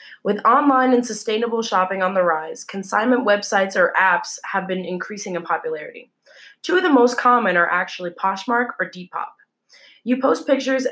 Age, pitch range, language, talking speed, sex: 20-39, 185-240 Hz, English, 165 wpm, female